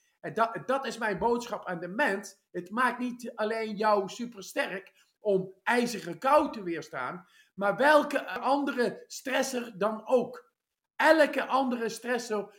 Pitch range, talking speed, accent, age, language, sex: 195-260 Hz, 140 wpm, Dutch, 50-69, English, male